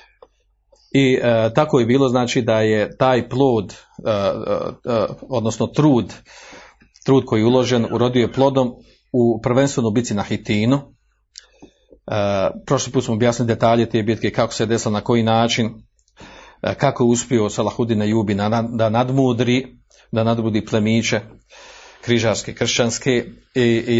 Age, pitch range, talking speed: 40-59, 105-125 Hz, 145 wpm